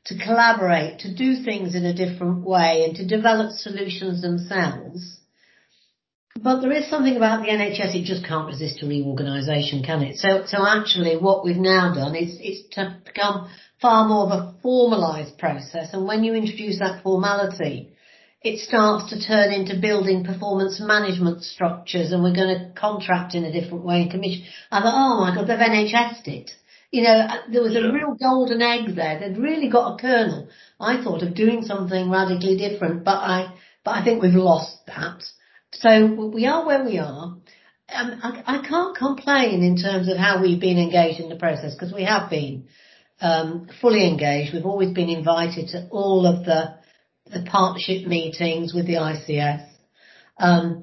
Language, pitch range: English, 170-220 Hz